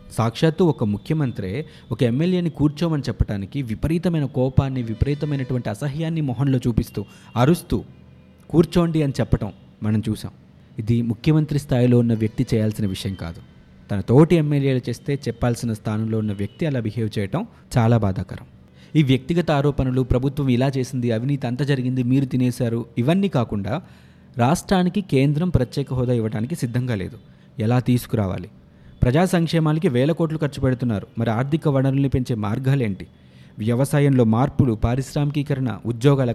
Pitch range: 110-145 Hz